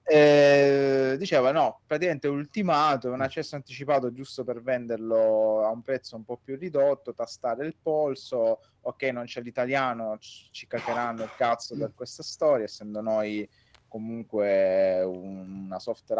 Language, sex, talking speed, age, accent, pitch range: Italian, male, 140 wpm, 20-39, native, 105-135 Hz